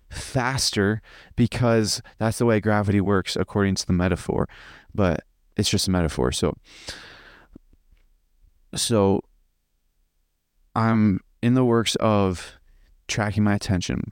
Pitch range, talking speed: 90-115 Hz, 110 wpm